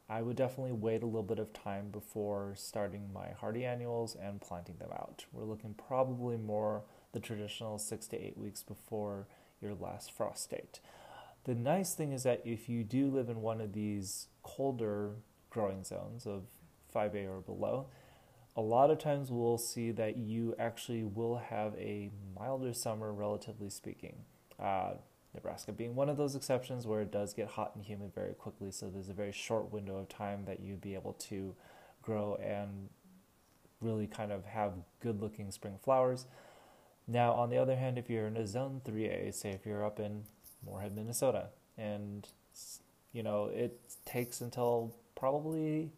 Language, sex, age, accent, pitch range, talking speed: English, male, 20-39, American, 105-120 Hz, 170 wpm